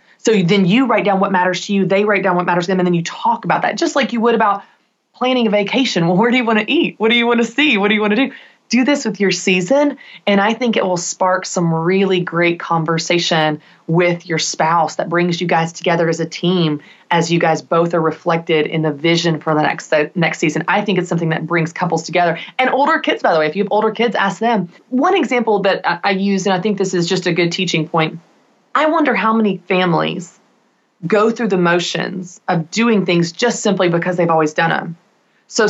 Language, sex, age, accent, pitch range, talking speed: English, female, 20-39, American, 170-220 Hz, 245 wpm